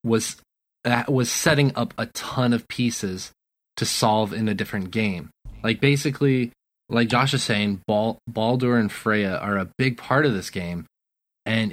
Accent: American